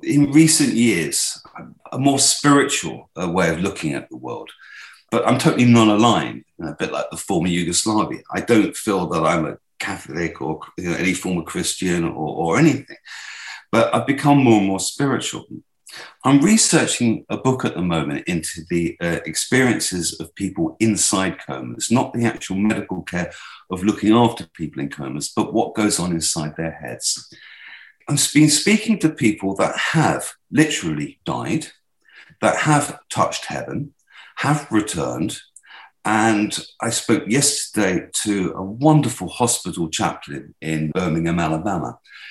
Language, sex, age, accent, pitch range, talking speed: English, male, 50-69, British, 90-140 Hz, 150 wpm